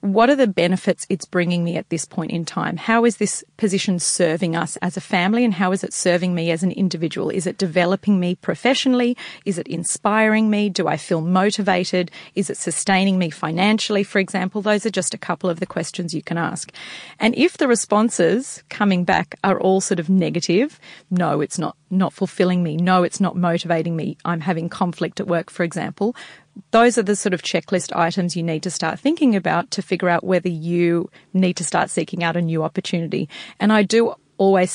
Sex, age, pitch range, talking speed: female, 40-59, 175-200 Hz, 205 wpm